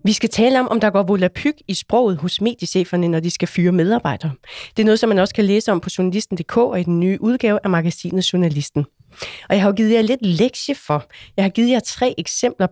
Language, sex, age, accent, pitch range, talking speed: Danish, female, 30-49, native, 175-225 Hz, 235 wpm